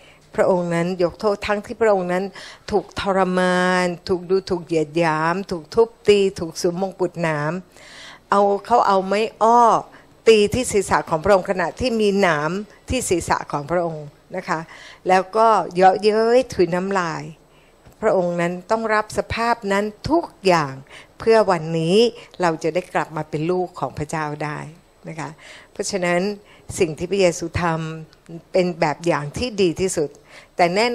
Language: Thai